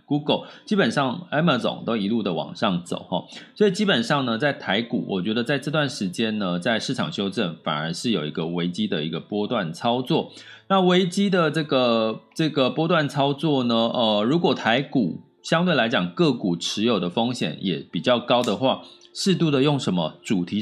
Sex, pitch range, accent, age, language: male, 105-160 Hz, native, 30-49, Chinese